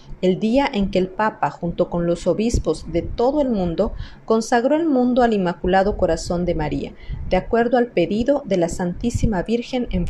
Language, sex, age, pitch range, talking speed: Spanish, female, 40-59, 175-245 Hz, 185 wpm